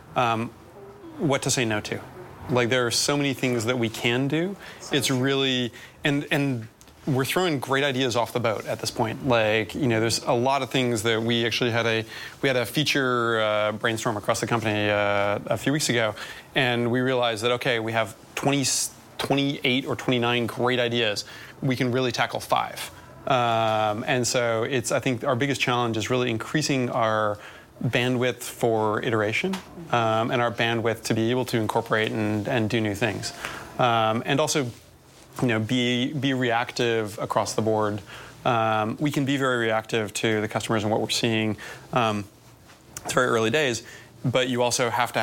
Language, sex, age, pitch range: English, male, 30-49, 110-130 Hz